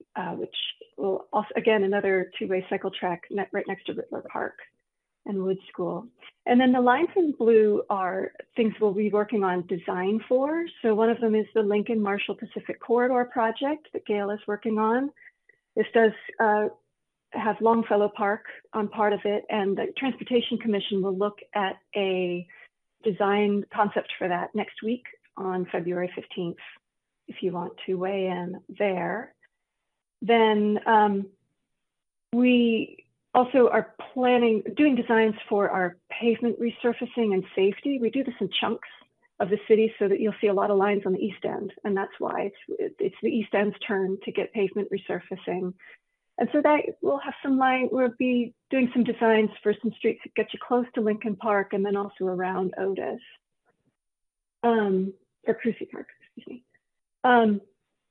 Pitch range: 200-235 Hz